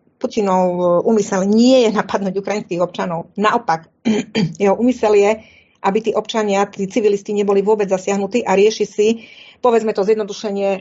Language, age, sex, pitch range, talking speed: Czech, 40-59, female, 185-215 Hz, 140 wpm